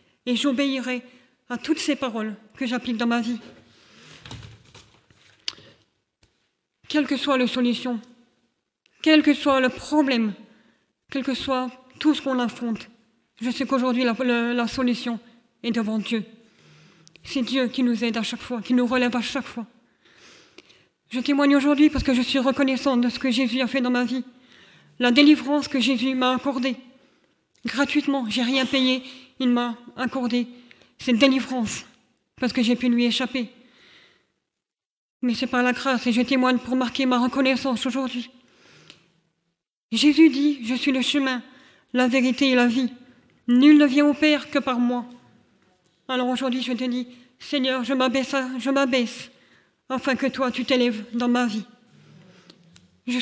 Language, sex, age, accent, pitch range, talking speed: French, female, 40-59, French, 240-265 Hz, 160 wpm